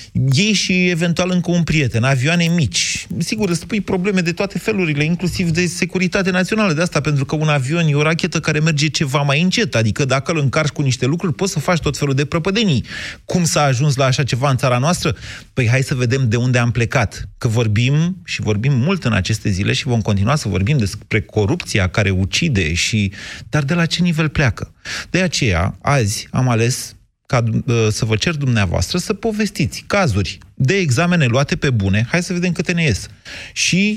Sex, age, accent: male, 30-49, native